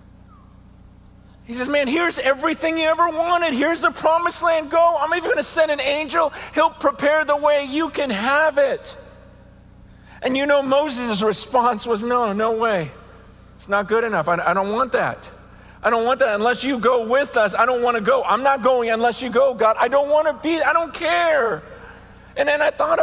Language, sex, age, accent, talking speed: English, male, 50-69, American, 205 wpm